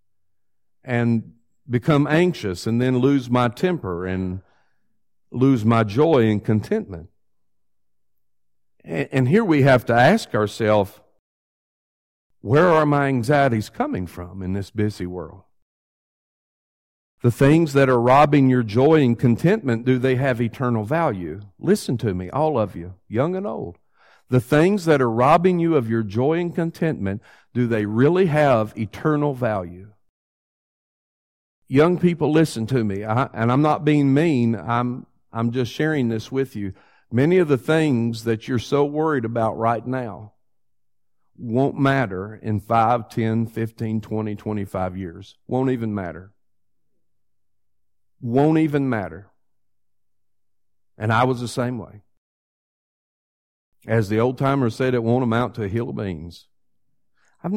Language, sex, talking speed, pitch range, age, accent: English, male, 140 wpm, 100-135 Hz, 50-69, American